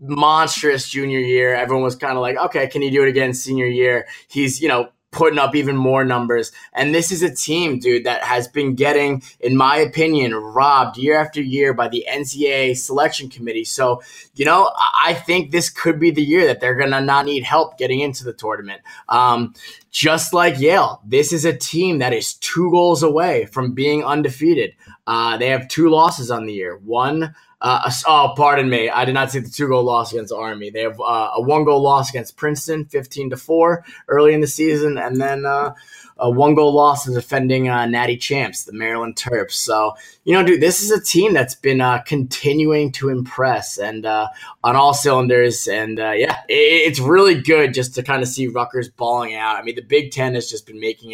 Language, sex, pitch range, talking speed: English, male, 125-150 Hz, 205 wpm